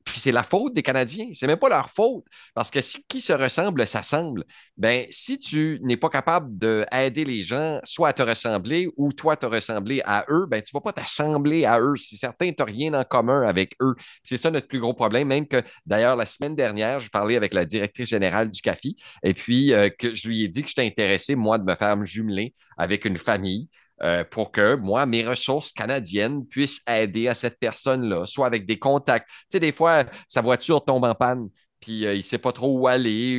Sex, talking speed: male, 230 wpm